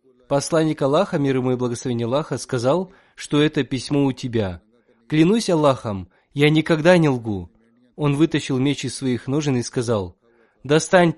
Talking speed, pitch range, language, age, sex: 150 wpm, 120-150 Hz, Russian, 20-39, male